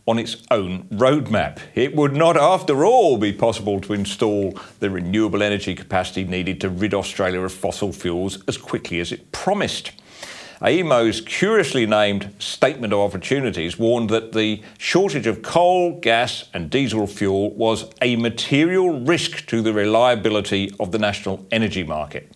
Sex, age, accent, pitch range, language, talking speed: male, 40-59, British, 100-130 Hz, English, 155 wpm